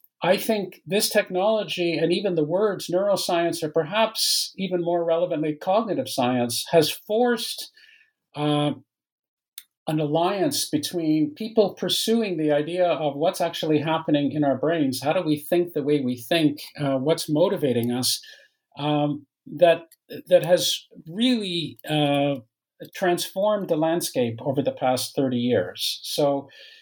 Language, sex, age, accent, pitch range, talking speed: English, male, 50-69, American, 135-180 Hz, 135 wpm